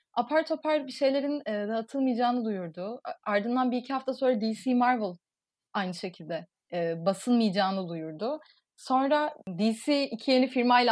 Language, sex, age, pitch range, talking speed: Turkish, female, 30-49, 205-275 Hz, 130 wpm